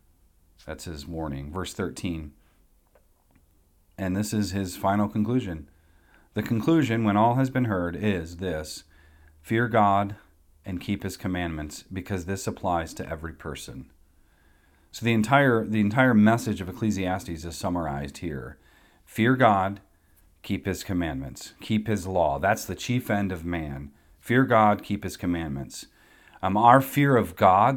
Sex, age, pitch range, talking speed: male, 40-59, 85-110 Hz, 145 wpm